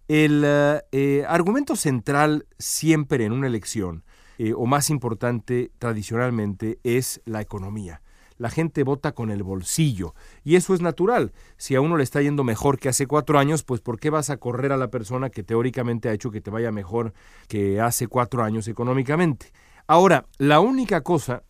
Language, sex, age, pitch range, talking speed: Spanish, male, 40-59, 110-145 Hz, 175 wpm